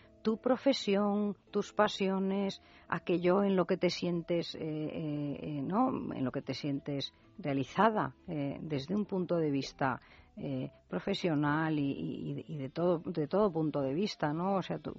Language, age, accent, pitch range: Spanish, 40-59, Spanish, 145-195 Hz